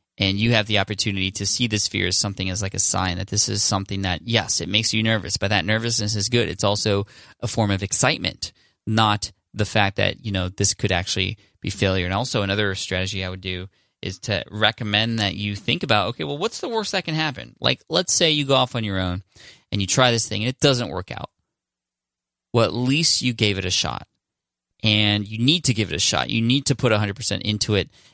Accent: American